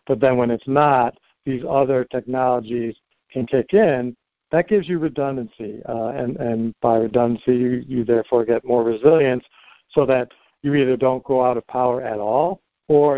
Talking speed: 175 wpm